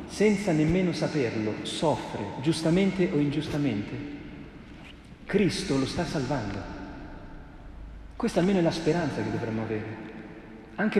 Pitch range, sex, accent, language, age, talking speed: 125-165 Hz, male, native, Italian, 40-59, 110 wpm